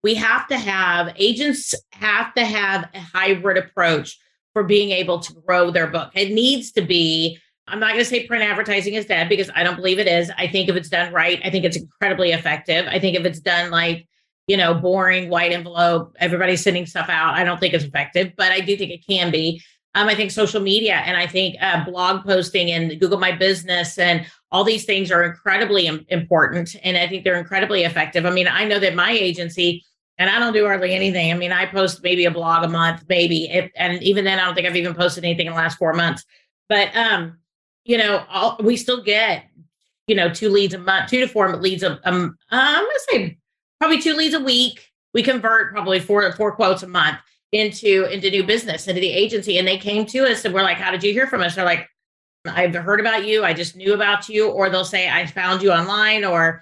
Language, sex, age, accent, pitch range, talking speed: English, female, 30-49, American, 175-205 Hz, 235 wpm